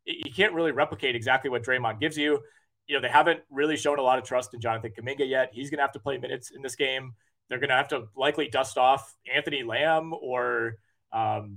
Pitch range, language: 120-150 Hz, English